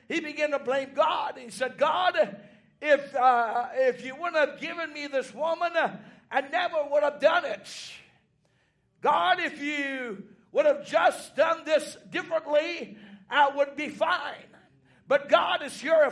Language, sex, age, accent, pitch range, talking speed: English, male, 60-79, American, 255-320 Hz, 155 wpm